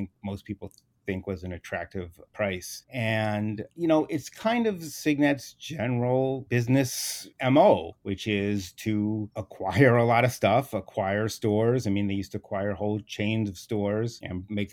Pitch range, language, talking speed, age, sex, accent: 100-120 Hz, English, 160 wpm, 30-49, male, American